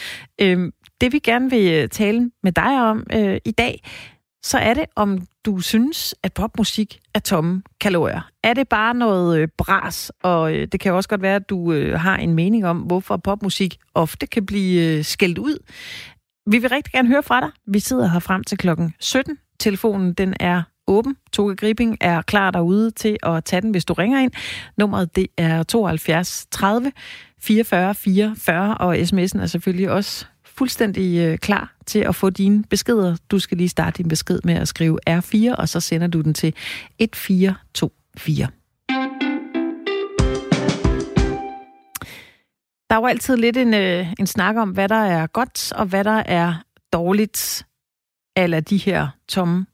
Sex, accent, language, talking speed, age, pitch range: female, native, Danish, 160 wpm, 30-49, 175-225 Hz